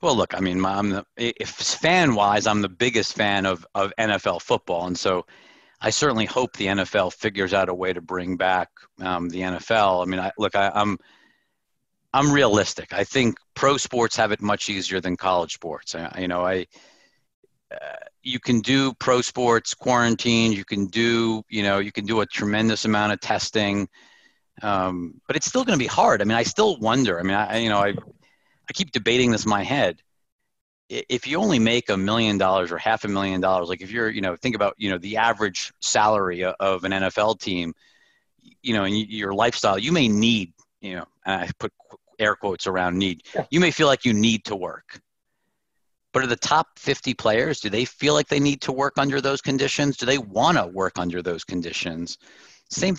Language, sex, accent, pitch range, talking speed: English, male, American, 95-120 Hz, 205 wpm